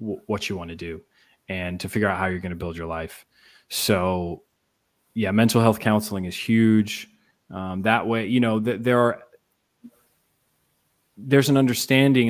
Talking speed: 160 wpm